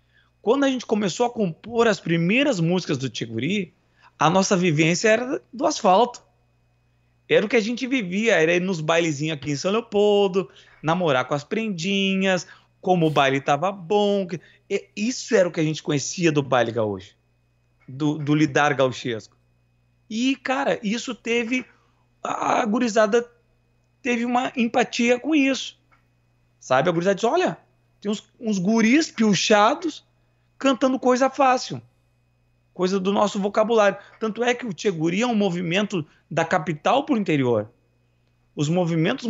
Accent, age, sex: Brazilian, 20-39, male